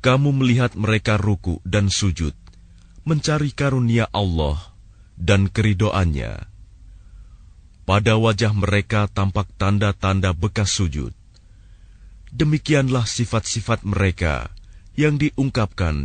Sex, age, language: male, 30-49, Indonesian